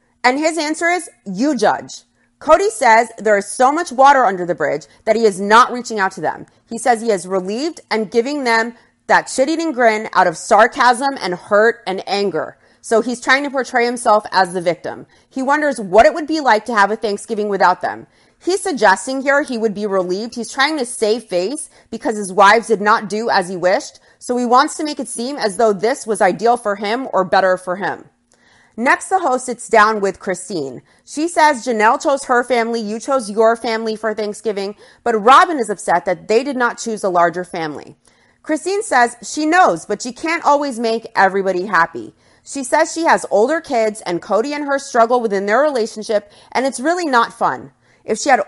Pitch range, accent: 205-270 Hz, American